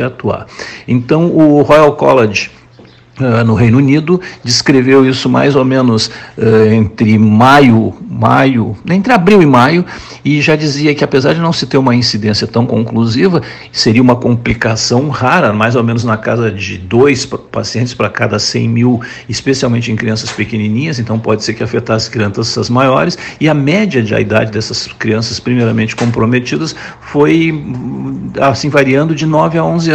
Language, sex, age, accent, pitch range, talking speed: Portuguese, male, 60-79, Brazilian, 110-145 Hz, 160 wpm